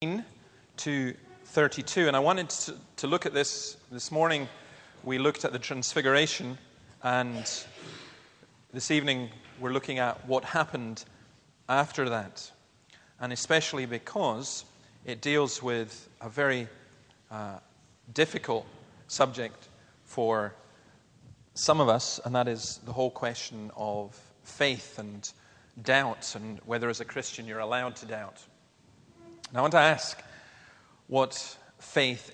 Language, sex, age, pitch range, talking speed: English, male, 40-59, 120-140 Hz, 125 wpm